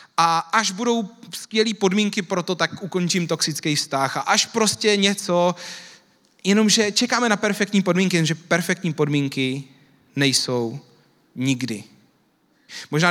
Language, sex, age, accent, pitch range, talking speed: Czech, male, 30-49, native, 160-215 Hz, 120 wpm